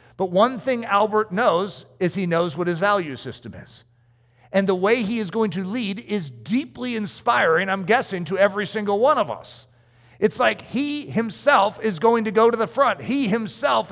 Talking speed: 195 wpm